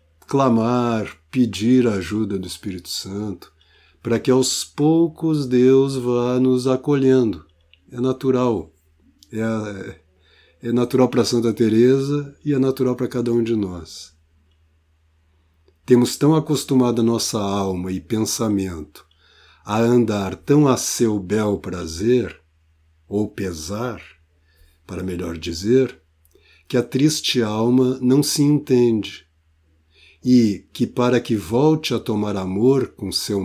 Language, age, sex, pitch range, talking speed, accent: Portuguese, 60-79, male, 80-125 Hz, 120 wpm, Brazilian